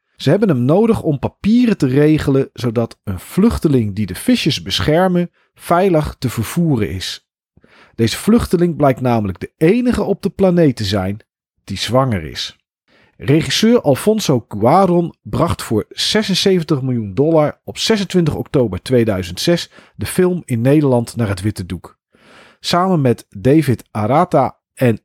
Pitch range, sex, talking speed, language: 110-170 Hz, male, 140 wpm, Dutch